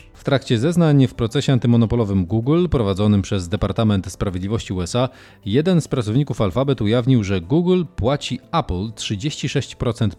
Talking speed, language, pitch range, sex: 130 wpm, Polish, 100-130 Hz, male